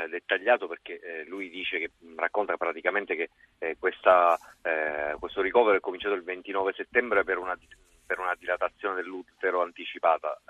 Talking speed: 120 wpm